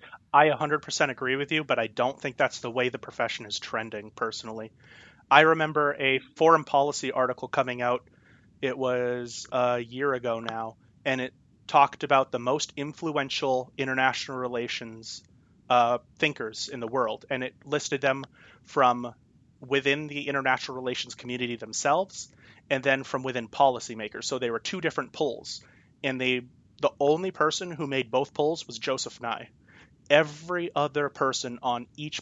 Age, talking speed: 30-49, 155 wpm